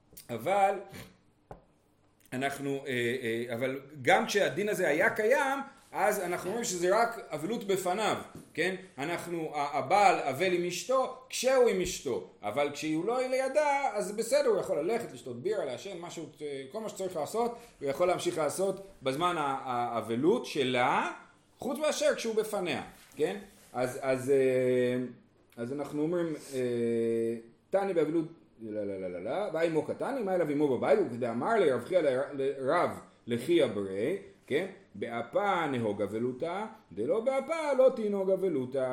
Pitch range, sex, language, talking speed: 130-195 Hz, male, Hebrew, 135 wpm